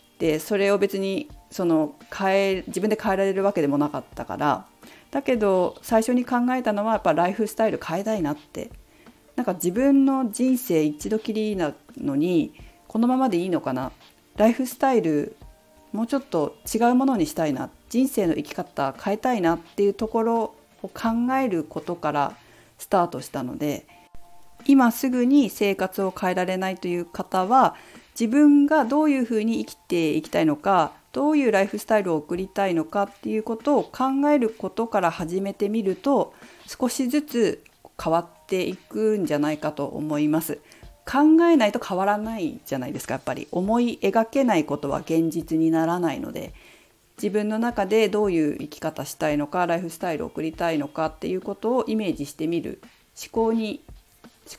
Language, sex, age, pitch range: Japanese, female, 40-59, 170-245 Hz